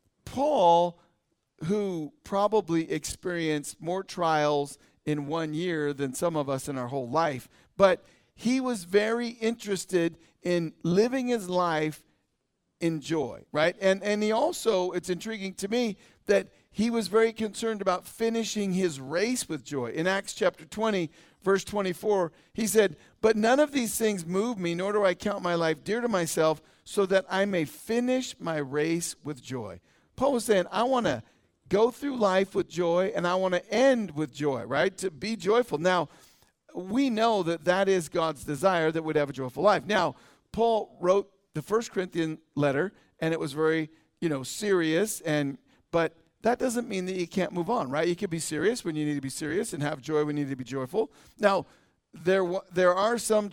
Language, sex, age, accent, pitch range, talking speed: English, male, 50-69, American, 155-210 Hz, 185 wpm